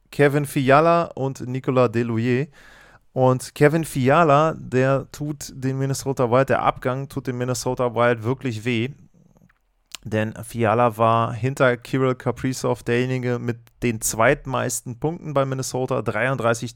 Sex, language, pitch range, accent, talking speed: male, German, 120-145 Hz, German, 125 wpm